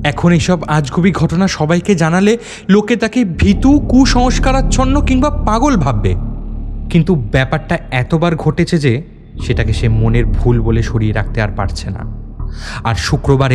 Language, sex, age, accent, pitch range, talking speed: Bengali, male, 30-49, native, 105-170 Hz, 135 wpm